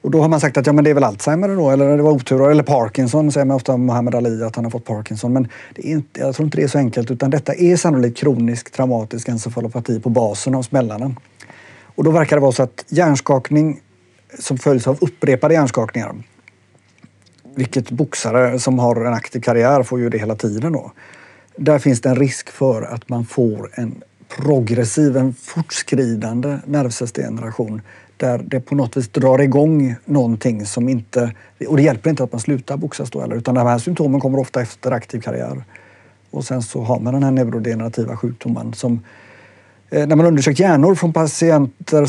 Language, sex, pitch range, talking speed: Swedish, male, 115-140 Hz, 195 wpm